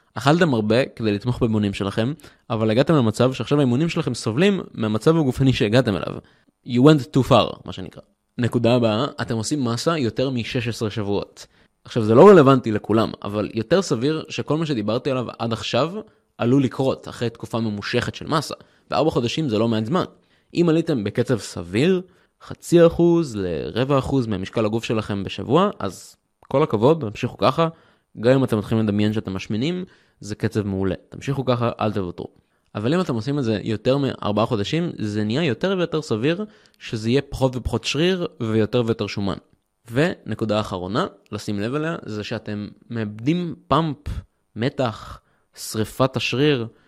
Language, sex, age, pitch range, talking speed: Hebrew, male, 20-39, 105-140 Hz, 155 wpm